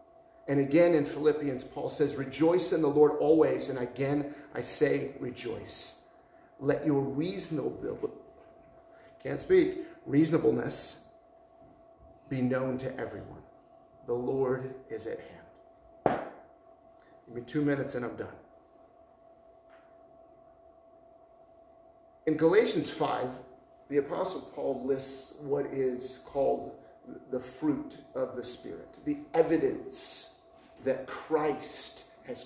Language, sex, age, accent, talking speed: English, male, 40-59, American, 110 wpm